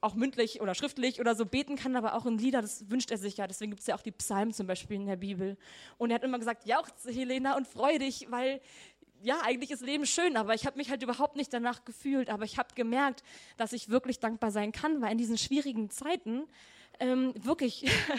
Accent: German